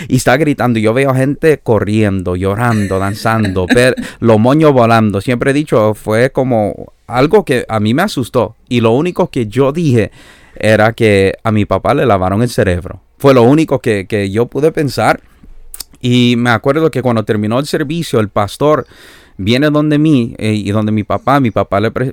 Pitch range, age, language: 105-130 Hz, 30-49, Spanish